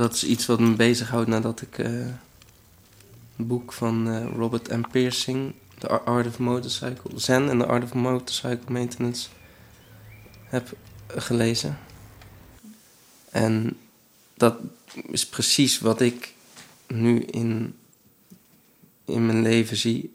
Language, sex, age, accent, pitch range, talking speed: Dutch, male, 20-39, Dutch, 115-125 Hz, 120 wpm